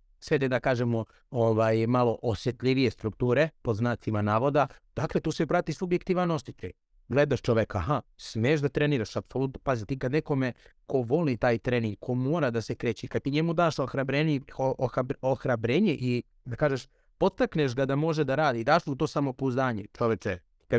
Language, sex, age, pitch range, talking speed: Croatian, male, 30-49, 115-150 Hz, 165 wpm